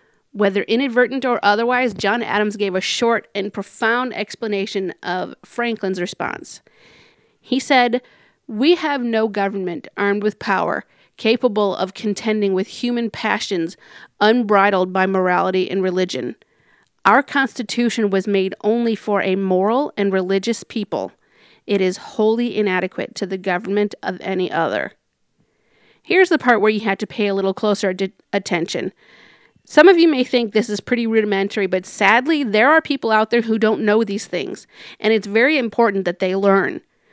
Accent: American